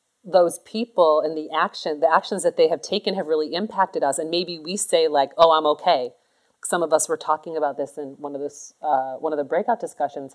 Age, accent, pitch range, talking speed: 30-49, American, 155-185 Hz, 230 wpm